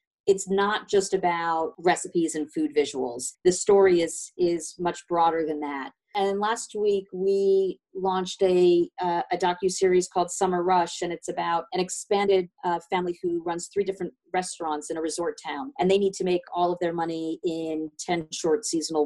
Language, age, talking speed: English, 40-59, 180 wpm